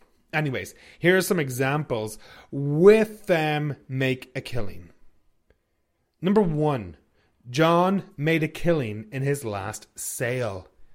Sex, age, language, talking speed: male, 30-49, English, 110 wpm